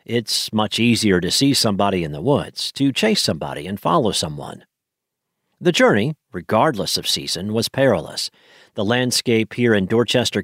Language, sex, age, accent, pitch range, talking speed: English, male, 50-69, American, 110-145 Hz, 155 wpm